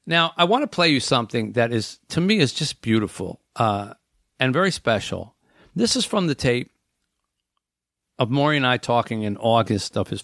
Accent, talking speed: American, 190 wpm